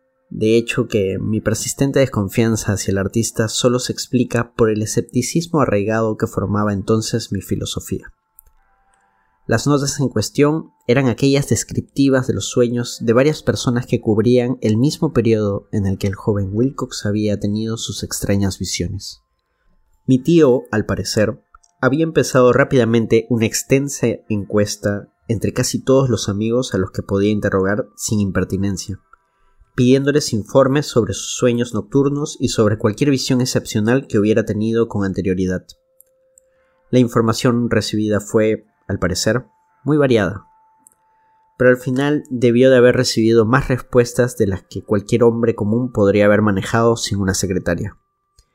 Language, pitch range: Spanish, 105-130 Hz